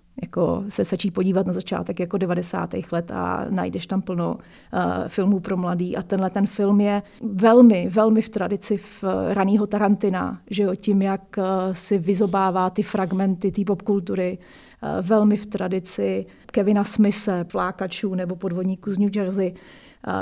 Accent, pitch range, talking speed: native, 190-220 Hz, 155 wpm